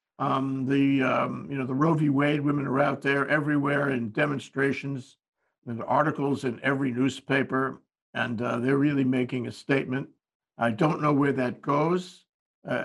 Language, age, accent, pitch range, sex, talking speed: English, 60-79, American, 125-150 Hz, male, 165 wpm